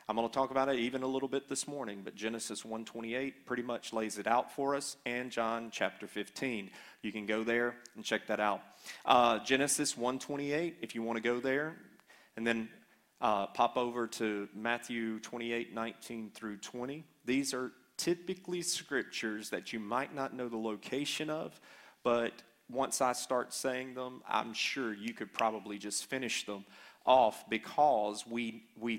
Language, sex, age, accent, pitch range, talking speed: English, male, 30-49, American, 110-135 Hz, 175 wpm